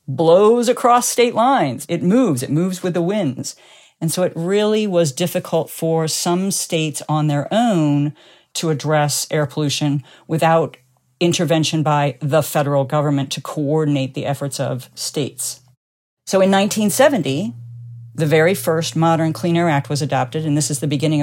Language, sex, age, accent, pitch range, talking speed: English, female, 50-69, American, 140-175 Hz, 160 wpm